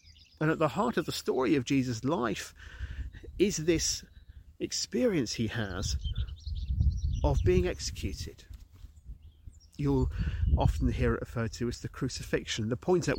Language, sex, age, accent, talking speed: English, male, 40-59, British, 135 wpm